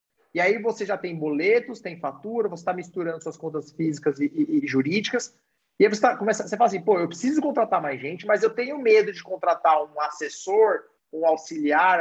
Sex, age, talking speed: male, 30-49, 205 wpm